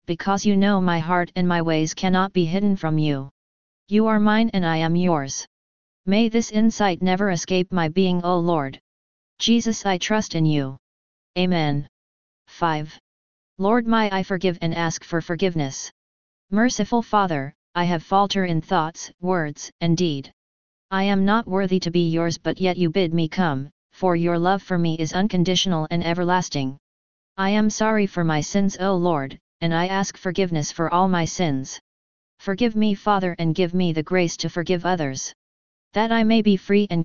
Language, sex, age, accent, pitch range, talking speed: English, female, 30-49, American, 155-195 Hz, 175 wpm